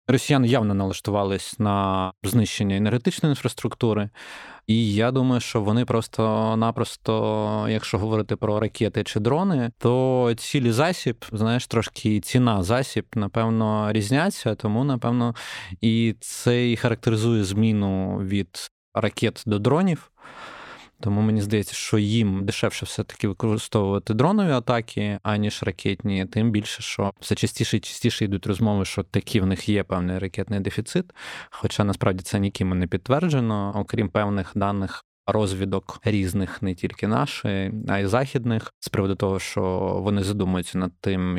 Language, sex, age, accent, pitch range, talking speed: Ukrainian, male, 20-39, native, 100-115 Hz, 135 wpm